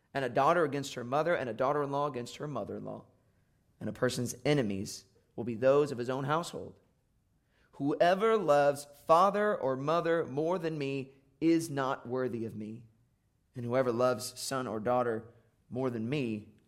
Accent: American